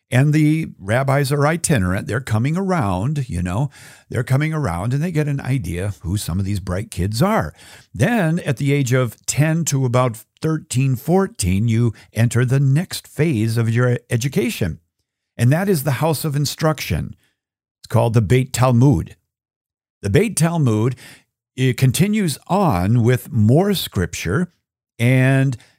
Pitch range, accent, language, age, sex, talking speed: 110-150 Hz, American, English, 50-69, male, 155 wpm